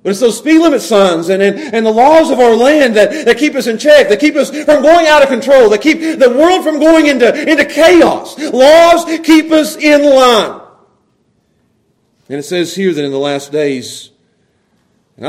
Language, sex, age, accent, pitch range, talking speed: English, male, 40-59, American, 200-300 Hz, 205 wpm